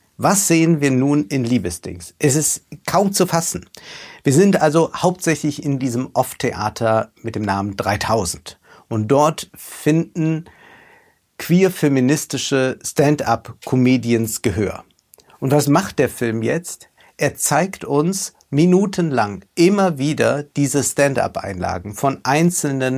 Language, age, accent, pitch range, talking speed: German, 50-69, German, 120-165 Hz, 115 wpm